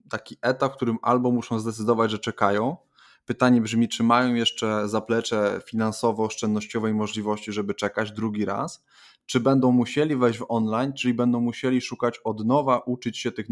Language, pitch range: Polish, 110-125 Hz